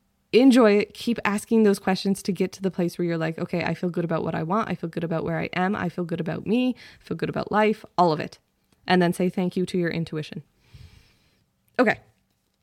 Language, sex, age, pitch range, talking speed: English, female, 20-39, 165-205 Hz, 240 wpm